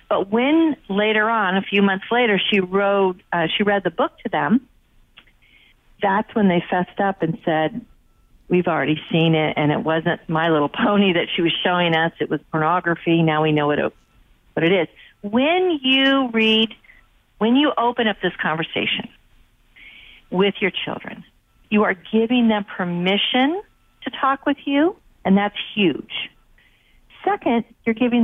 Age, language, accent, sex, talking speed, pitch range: 50-69, English, American, female, 160 wpm, 180-230 Hz